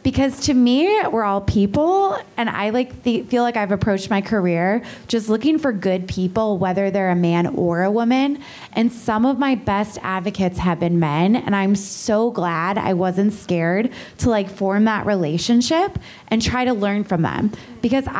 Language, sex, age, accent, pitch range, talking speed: English, female, 20-39, American, 185-235 Hz, 185 wpm